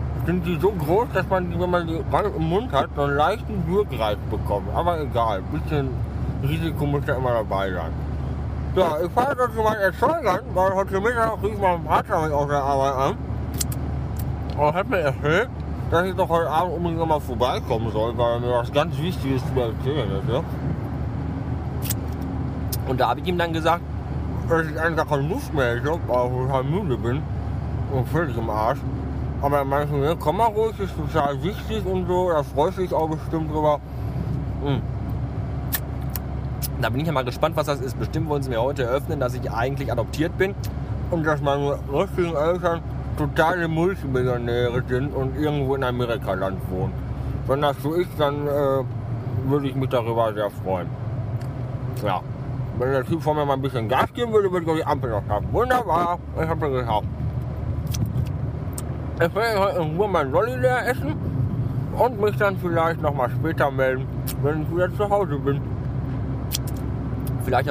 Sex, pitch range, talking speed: male, 120-155 Hz, 180 wpm